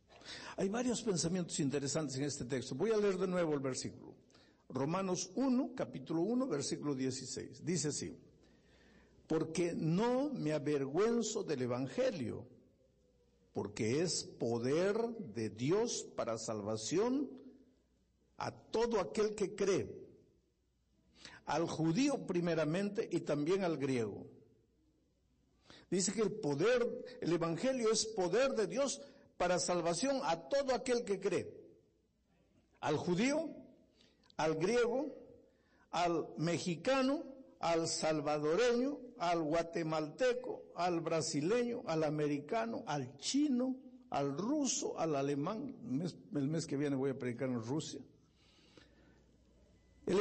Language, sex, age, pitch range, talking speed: Spanish, male, 60-79, 155-250 Hz, 115 wpm